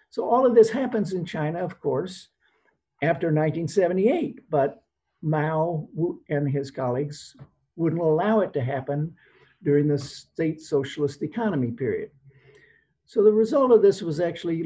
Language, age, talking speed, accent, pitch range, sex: English, 60-79, 140 wpm, American, 145-185 Hz, male